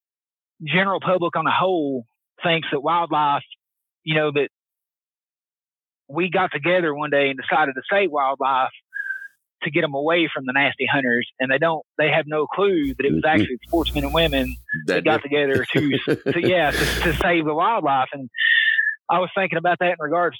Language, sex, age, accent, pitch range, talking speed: English, male, 30-49, American, 145-180 Hz, 180 wpm